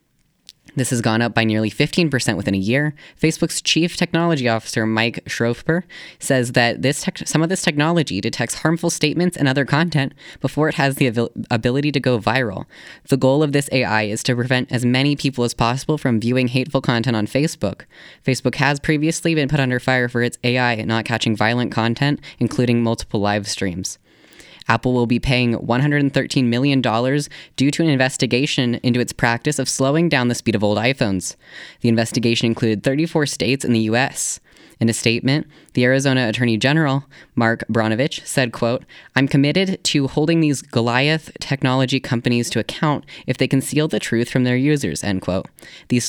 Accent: American